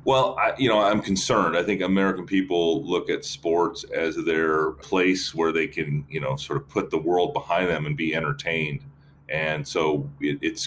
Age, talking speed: 30-49, 185 wpm